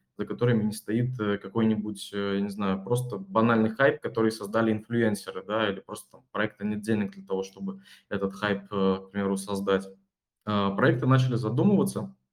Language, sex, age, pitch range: Russian, male, 20-39, 100-125 Hz